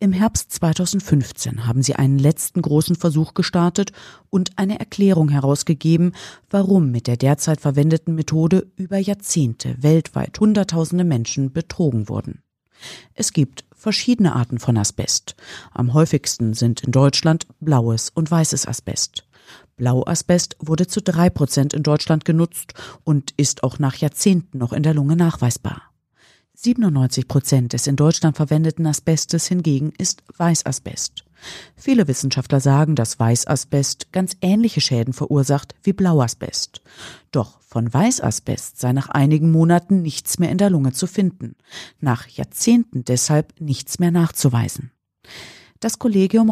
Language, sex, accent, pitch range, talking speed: German, female, German, 135-175 Hz, 135 wpm